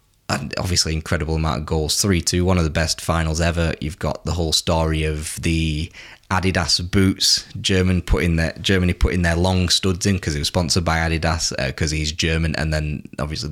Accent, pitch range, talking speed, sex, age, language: British, 80-95 Hz, 195 wpm, male, 20-39, English